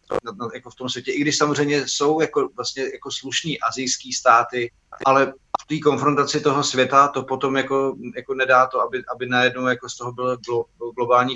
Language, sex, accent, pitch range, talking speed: Czech, male, native, 115-130 Hz, 190 wpm